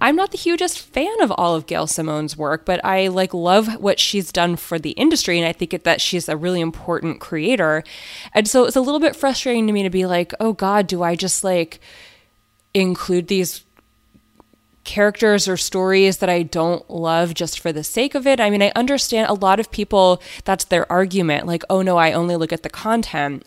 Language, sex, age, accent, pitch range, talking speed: English, female, 20-39, American, 165-210 Hz, 210 wpm